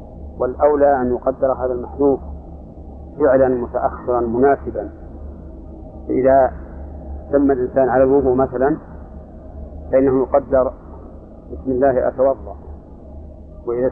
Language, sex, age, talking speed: Arabic, male, 50-69, 85 wpm